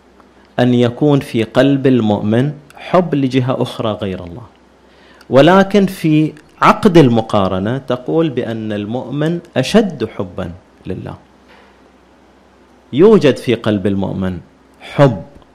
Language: Arabic